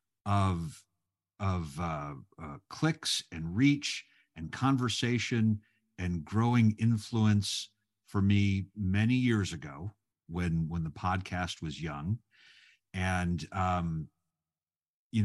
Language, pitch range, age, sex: English, 85-110 Hz, 50-69, male